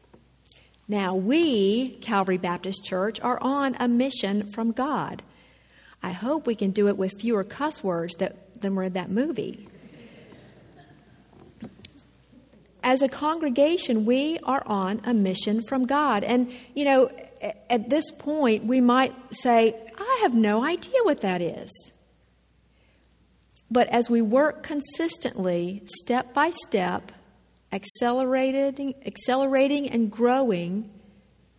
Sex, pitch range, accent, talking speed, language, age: female, 185-255 Hz, American, 125 wpm, English, 50-69